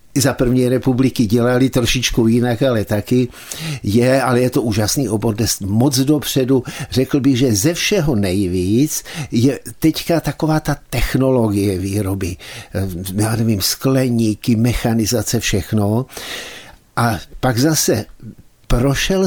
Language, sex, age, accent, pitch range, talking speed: Czech, male, 60-79, native, 115-145 Hz, 120 wpm